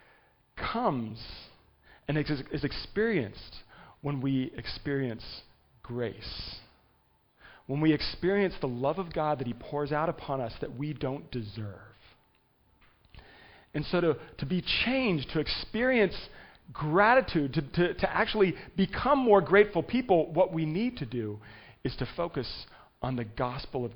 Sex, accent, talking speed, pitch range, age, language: male, American, 135 wpm, 125-185 Hz, 40-59, English